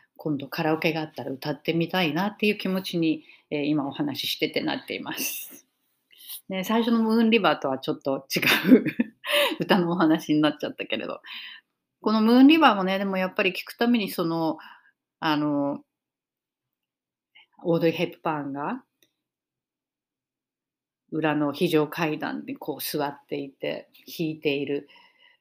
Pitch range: 145-195 Hz